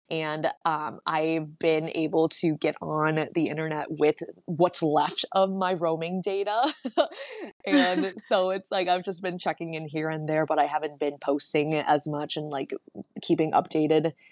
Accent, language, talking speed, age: American, English, 170 wpm, 20-39